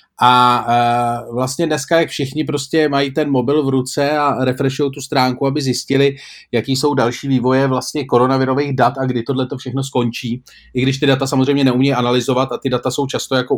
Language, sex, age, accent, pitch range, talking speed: Czech, male, 40-59, native, 125-150 Hz, 185 wpm